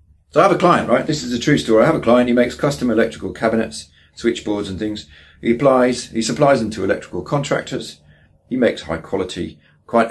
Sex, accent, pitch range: male, British, 90-115 Hz